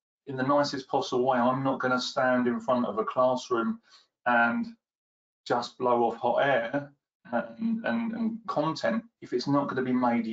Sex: male